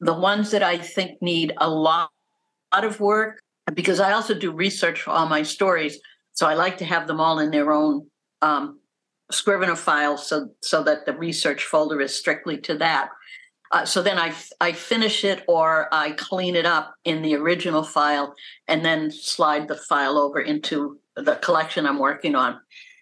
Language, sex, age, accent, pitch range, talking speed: English, female, 60-79, American, 150-195 Hz, 180 wpm